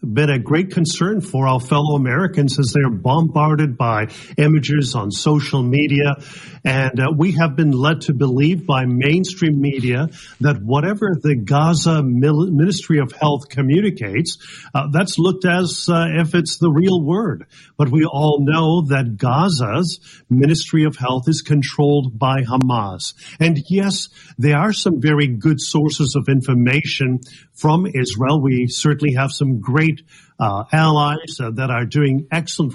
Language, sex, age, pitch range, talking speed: English, male, 50-69, 140-165 Hz, 150 wpm